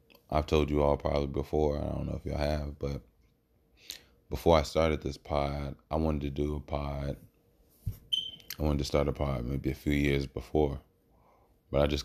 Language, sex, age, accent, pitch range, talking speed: English, male, 20-39, American, 70-75 Hz, 190 wpm